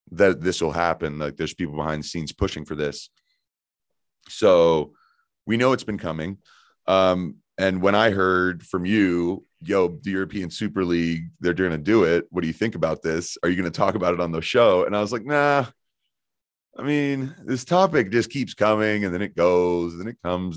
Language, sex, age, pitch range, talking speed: English, male, 30-49, 85-115 Hz, 205 wpm